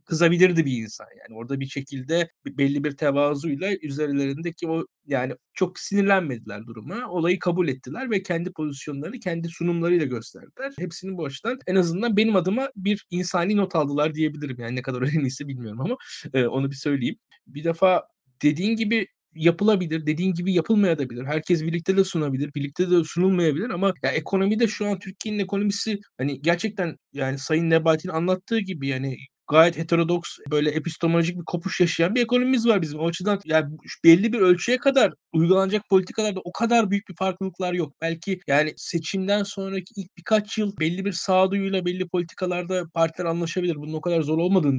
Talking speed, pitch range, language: 165 wpm, 155-195 Hz, Turkish